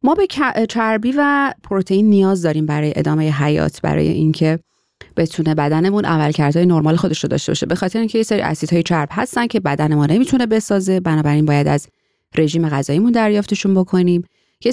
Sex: female